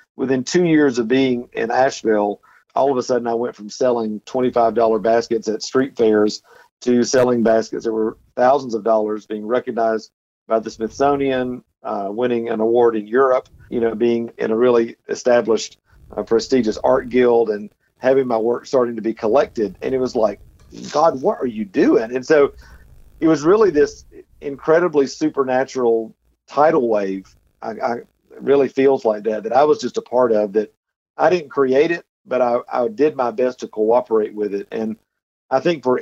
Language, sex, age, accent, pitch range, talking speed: English, male, 50-69, American, 110-130 Hz, 185 wpm